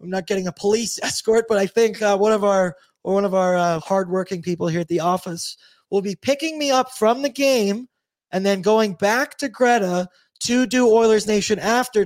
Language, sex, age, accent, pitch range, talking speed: English, male, 20-39, American, 185-225 Hz, 215 wpm